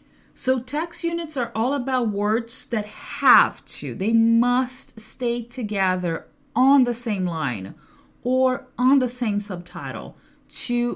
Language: English